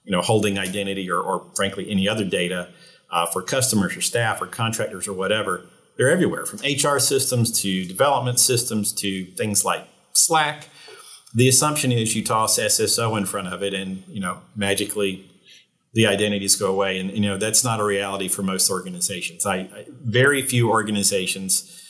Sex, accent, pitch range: male, American, 95-115 Hz